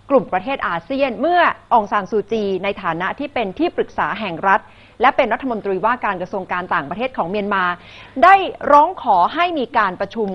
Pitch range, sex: 190-265 Hz, female